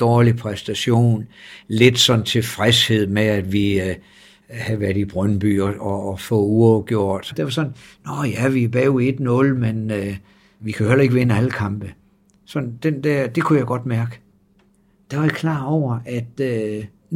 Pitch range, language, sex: 110-150 Hz, Danish, male